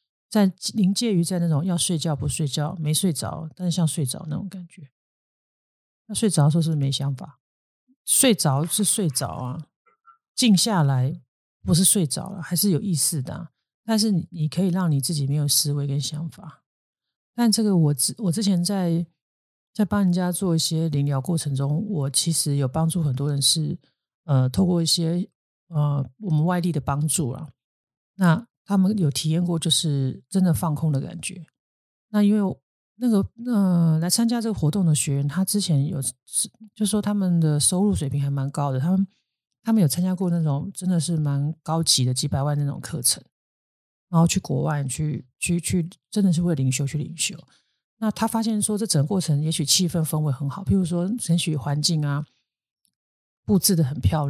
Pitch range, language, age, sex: 145-190 Hz, Chinese, 50-69, male